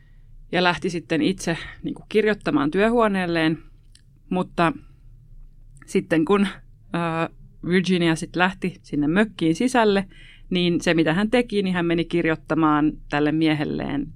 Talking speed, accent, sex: 105 wpm, native, female